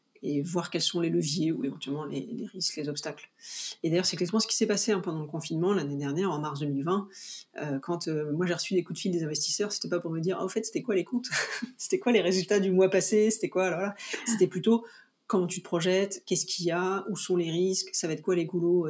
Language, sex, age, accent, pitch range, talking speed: English, female, 40-59, French, 165-195 Hz, 275 wpm